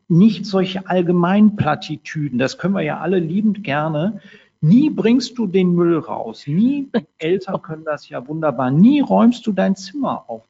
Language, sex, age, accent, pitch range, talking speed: German, male, 50-69, German, 150-195 Hz, 160 wpm